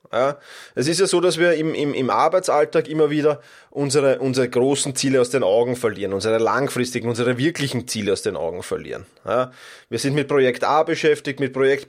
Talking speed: 185 wpm